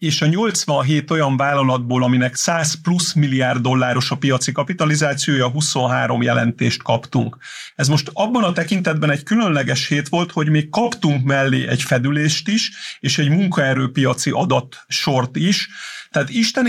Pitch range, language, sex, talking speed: 135-175 Hz, Hungarian, male, 140 wpm